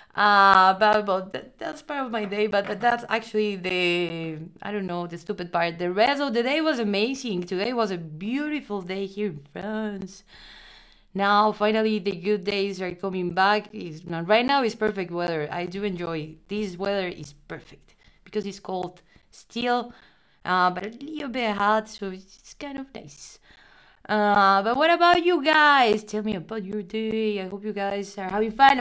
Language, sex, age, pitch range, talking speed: English, female, 20-39, 195-230 Hz, 190 wpm